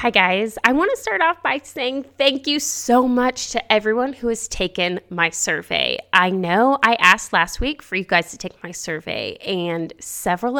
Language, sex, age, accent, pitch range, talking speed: English, female, 20-39, American, 185-245 Hz, 200 wpm